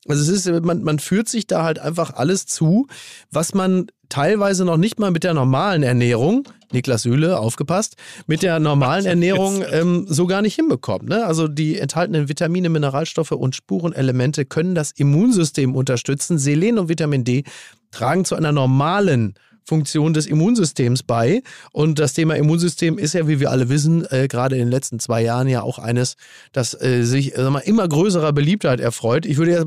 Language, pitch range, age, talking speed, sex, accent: German, 135-175 Hz, 30-49, 180 wpm, male, German